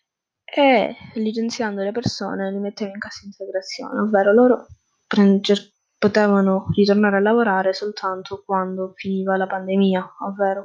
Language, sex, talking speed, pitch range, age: Italian, female, 125 wpm, 195-220 Hz, 10-29